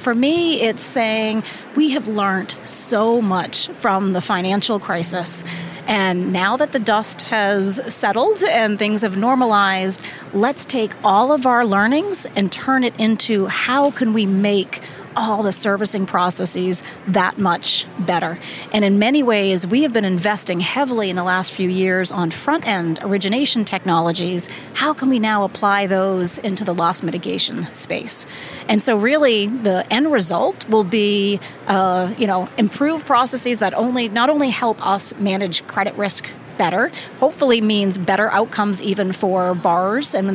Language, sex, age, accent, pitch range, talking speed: English, female, 30-49, American, 190-235 Hz, 160 wpm